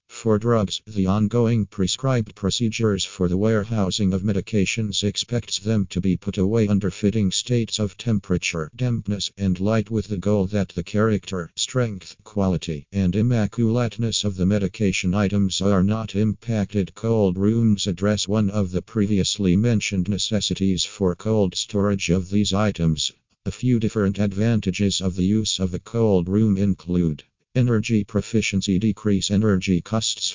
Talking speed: 145 wpm